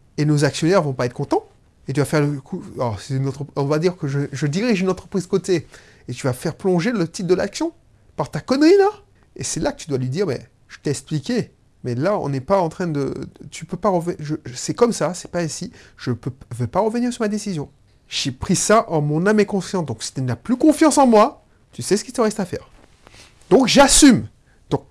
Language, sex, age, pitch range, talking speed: French, male, 30-49, 135-200 Hz, 250 wpm